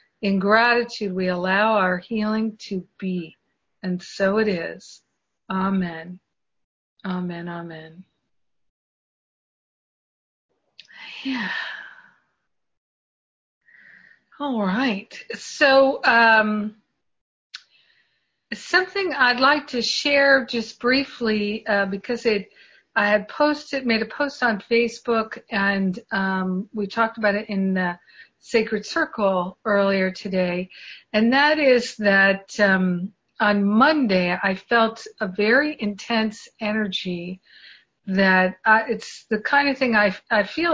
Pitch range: 190-235 Hz